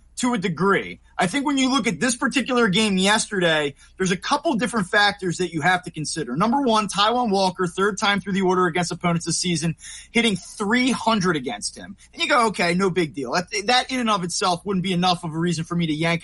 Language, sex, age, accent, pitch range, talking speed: English, male, 20-39, American, 180-225 Hz, 230 wpm